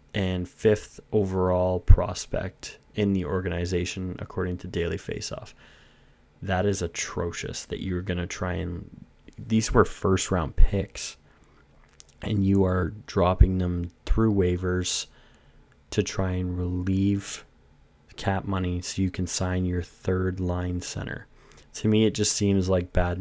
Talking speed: 135 wpm